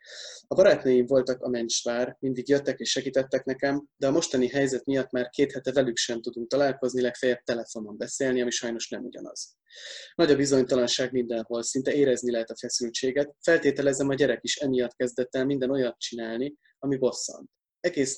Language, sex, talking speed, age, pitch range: Hungarian, male, 170 wpm, 20-39, 120-140 Hz